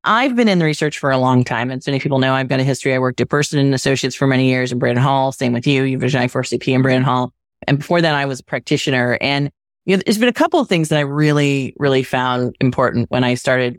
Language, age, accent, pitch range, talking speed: English, 20-39, American, 130-175 Hz, 280 wpm